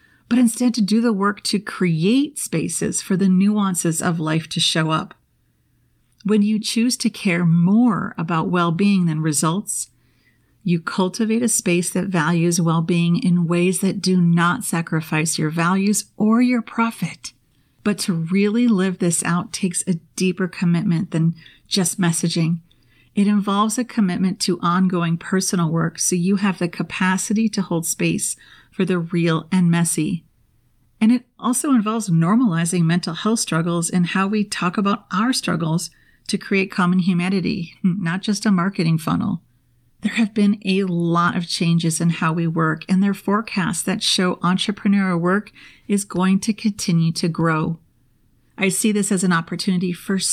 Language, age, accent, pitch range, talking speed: English, 40-59, American, 170-205 Hz, 160 wpm